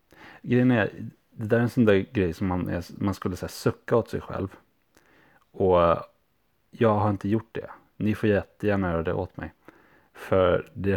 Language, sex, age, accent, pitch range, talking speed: Swedish, male, 30-49, Norwegian, 85-110 Hz, 175 wpm